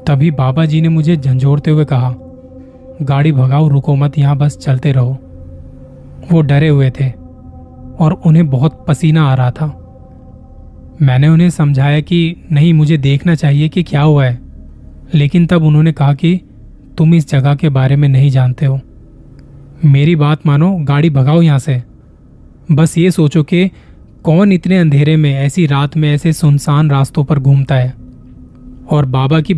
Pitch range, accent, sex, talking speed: 130-160 Hz, native, male, 160 wpm